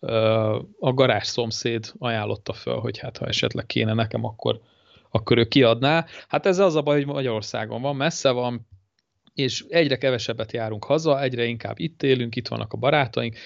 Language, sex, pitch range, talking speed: Hungarian, male, 115-140 Hz, 165 wpm